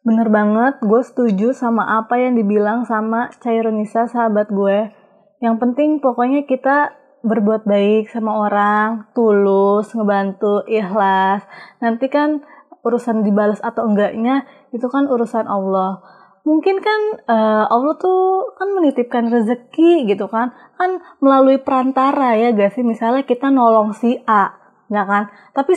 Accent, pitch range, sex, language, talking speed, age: native, 215-265 Hz, female, Indonesian, 130 wpm, 20-39